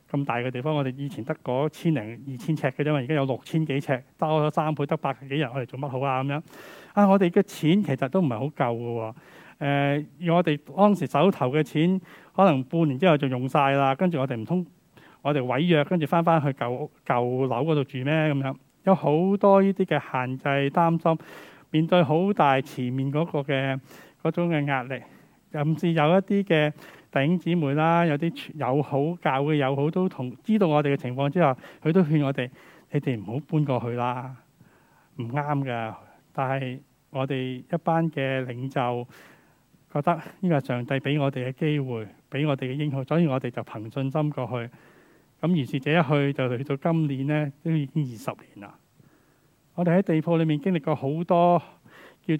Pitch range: 135-165 Hz